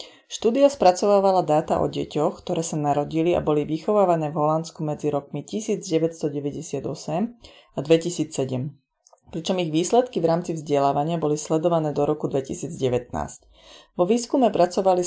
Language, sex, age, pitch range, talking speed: Slovak, female, 30-49, 150-180 Hz, 125 wpm